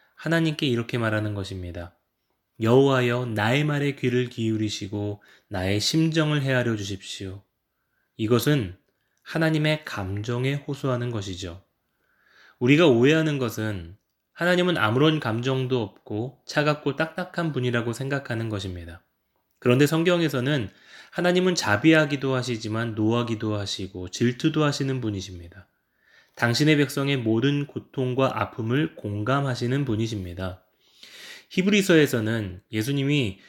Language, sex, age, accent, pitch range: Korean, male, 20-39, native, 105-140 Hz